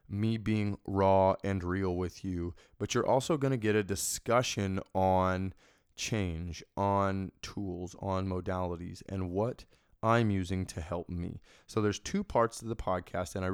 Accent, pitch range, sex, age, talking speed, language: American, 95-120 Hz, male, 20-39, 165 wpm, English